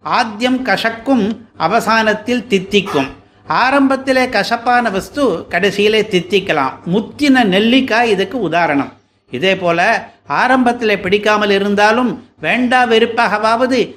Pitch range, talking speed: 190-230 Hz, 85 wpm